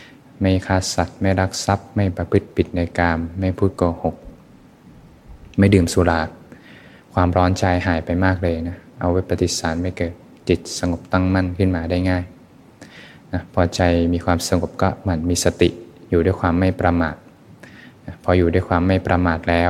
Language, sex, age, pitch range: Thai, male, 20-39, 85-95 Hz